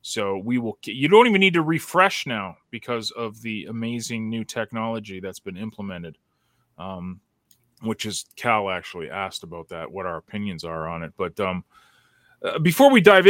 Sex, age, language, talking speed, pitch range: male, 30-49, English, 175 wpm, 120-175 Hz